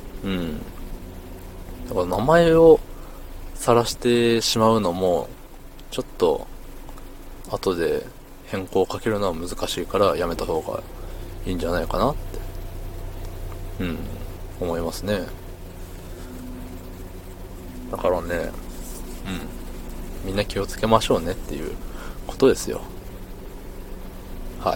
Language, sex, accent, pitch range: Japanese, male, native, 85-95 Hz